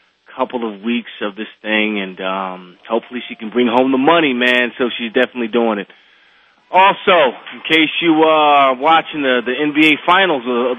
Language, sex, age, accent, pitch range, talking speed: English, male, 30-49, American, 115-165 Hz, 180 wpm